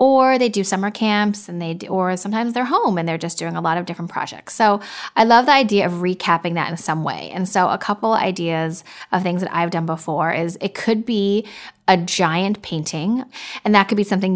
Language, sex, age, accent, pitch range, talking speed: English, female, 10-29, American, 170-210 Hz, 230 wpm